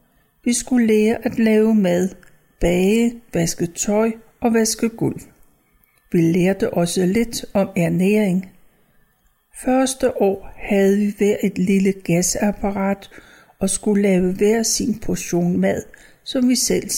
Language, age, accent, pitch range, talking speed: Danish, 60-79, native, 185-225 Hz, 125 wpm